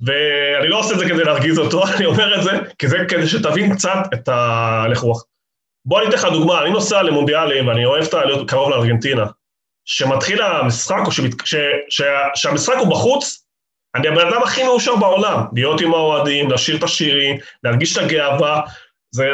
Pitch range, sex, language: 130-190 Hz, male, Hebrew